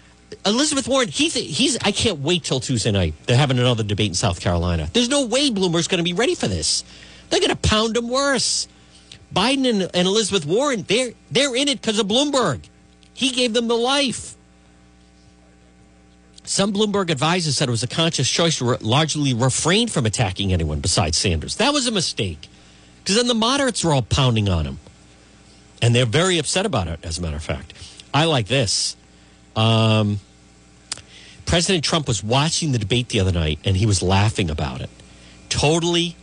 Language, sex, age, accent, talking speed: English, male, 50-69, American, 190 wpm